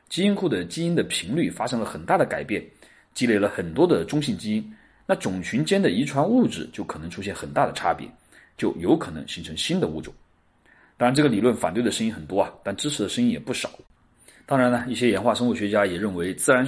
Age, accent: 30-49, native